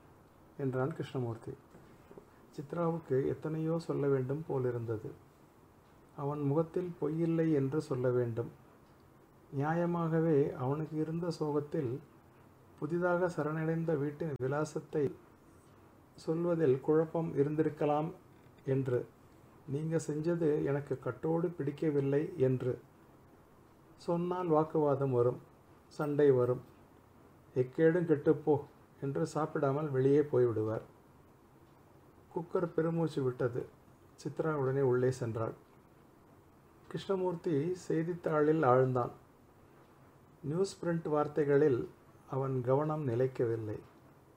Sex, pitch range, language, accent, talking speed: male, 130-160 Hz, Tamil, native, 75 wpm